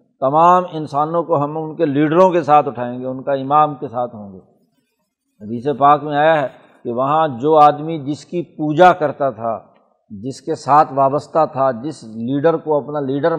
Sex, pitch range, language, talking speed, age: male, 140-175 Hz, Urdu, 190 wpm, 60-79